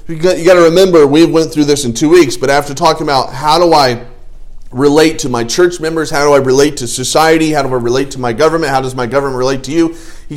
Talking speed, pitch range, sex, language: 265 wpm, 110-150 Hz, male, English